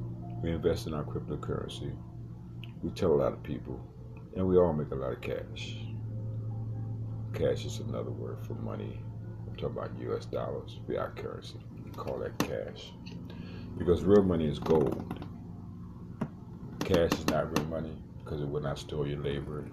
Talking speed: 165 wpm